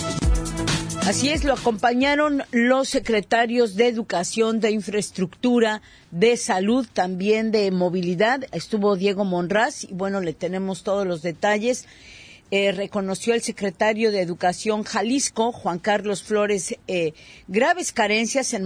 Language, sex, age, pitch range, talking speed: Spanish, female, 40-59, 185-230 Hz, 125 wpm